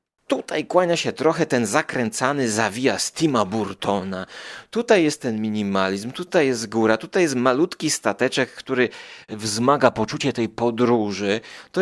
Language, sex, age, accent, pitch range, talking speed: Polish, male, 30-49, native, 115-170 Hz, 130 wpm